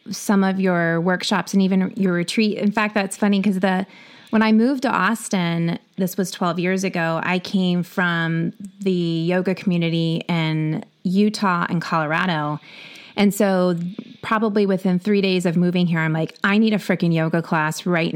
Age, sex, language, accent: 30-49, female, English, American